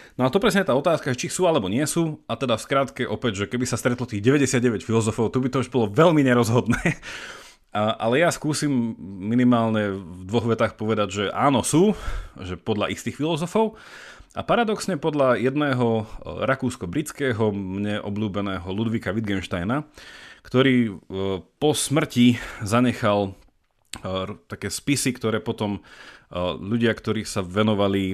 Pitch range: 100-130 Hz